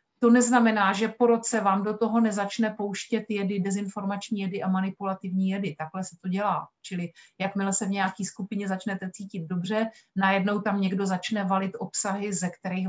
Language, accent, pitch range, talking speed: Czech, native, 190-220 Hz, 170 wpm